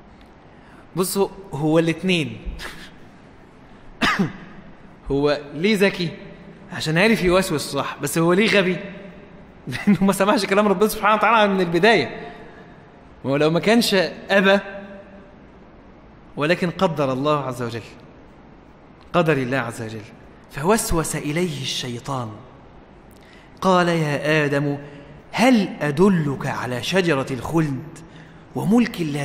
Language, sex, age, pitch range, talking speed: English, male, 20-39, 150-215 Hz, 105 wpm